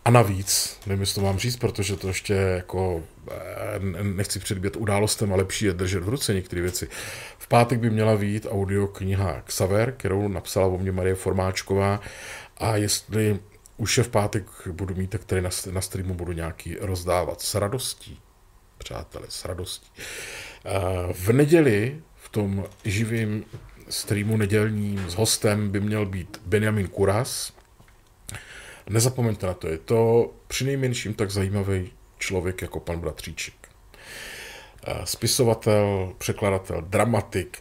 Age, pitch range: 40-59, 95-110 Hz